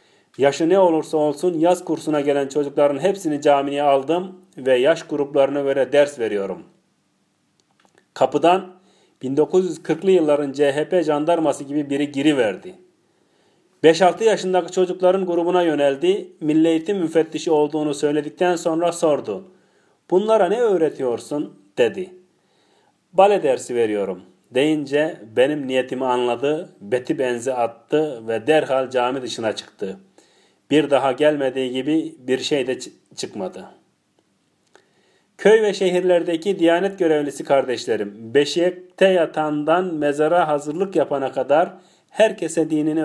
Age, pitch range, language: 40-59, 145-180 Hz, Turkish